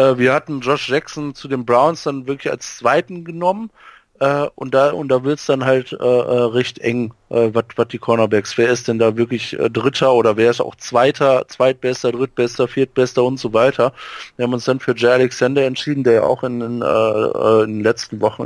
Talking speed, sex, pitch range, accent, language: 200 wpm, male, 115-130 Hz, German, German